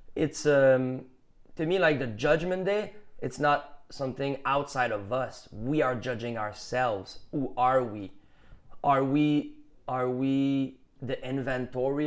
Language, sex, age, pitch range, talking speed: English, male, 20-39, 125-150 Hz, 135 wpm